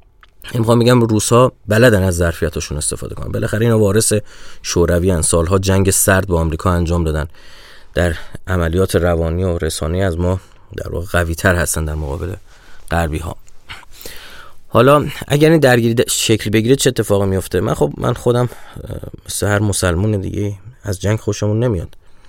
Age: 30-49